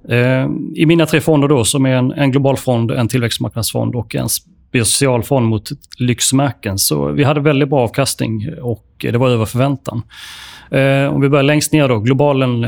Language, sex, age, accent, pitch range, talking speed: Swedish, male, 30-49, native, 115-135 Hz, 170 wpm